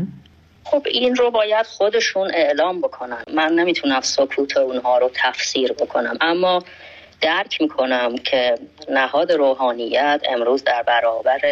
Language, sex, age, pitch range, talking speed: Persian, female, 30-49, 130-170 Hz, 120 wpm